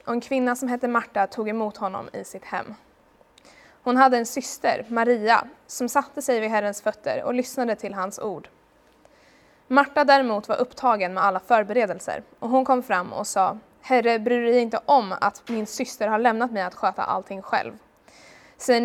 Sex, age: female, 20-39